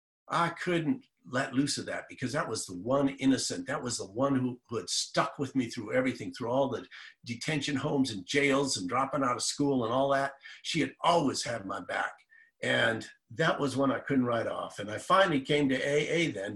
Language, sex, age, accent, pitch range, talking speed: English, male, 50-69, American, 120-150 Hz, 215 wpm